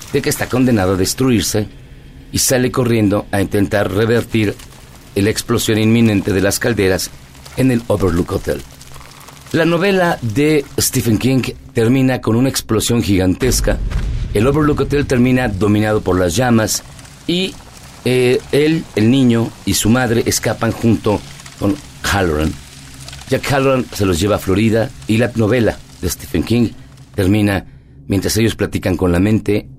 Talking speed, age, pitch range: 145 wpm, 50-69, 95-125 Hz